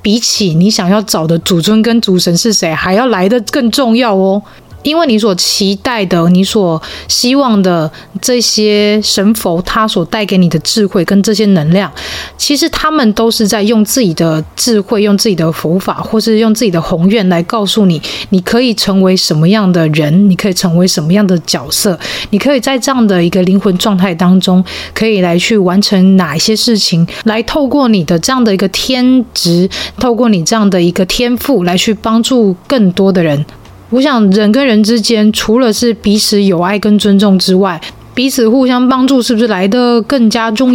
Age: 20-39